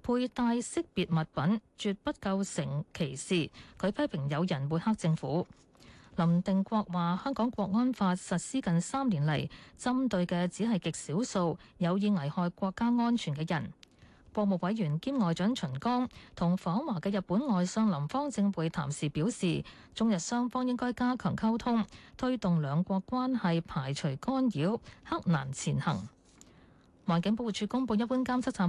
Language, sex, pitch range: Chinese, female, 170-235 Hz